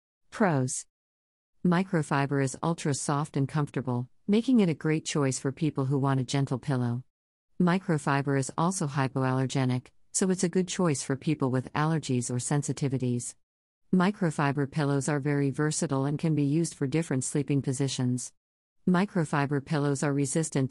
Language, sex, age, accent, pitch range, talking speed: English, female, 50-69, American, 130-155 Hz, 145 wpm